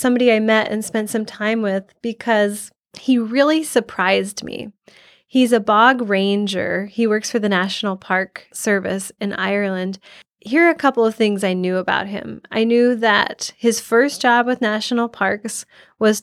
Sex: female